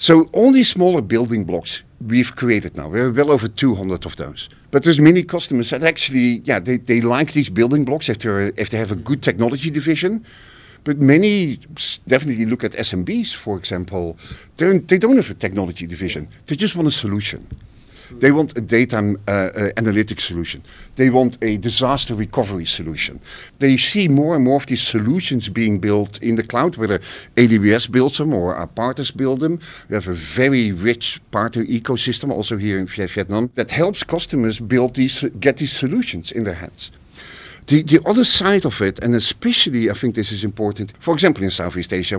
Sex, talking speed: male, 185 wpm